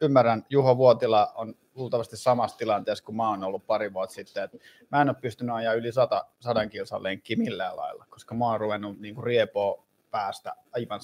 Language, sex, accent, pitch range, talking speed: Finnish, male, native, 105-130 Hz, 190 wpm